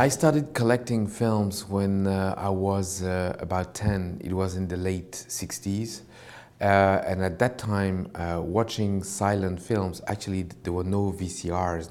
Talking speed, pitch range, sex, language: 155 wpm, 95-120 Hz, male, English